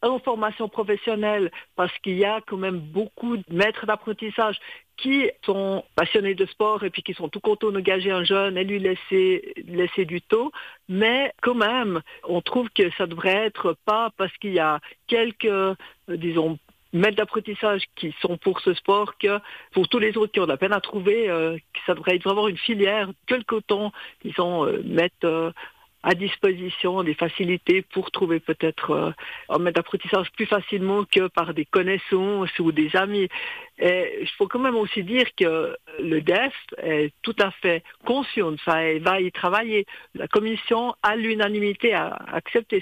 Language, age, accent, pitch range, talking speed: French, 50-69, French, 180-215 Hz, 180 wpm